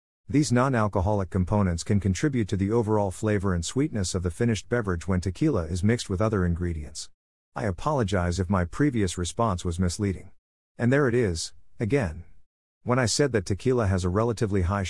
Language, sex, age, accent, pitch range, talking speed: English, male, 50-69, American, 90-120 Hz, 180 wpm